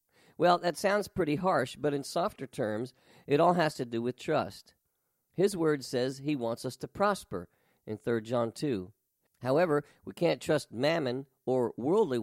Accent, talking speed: American, 170 wpm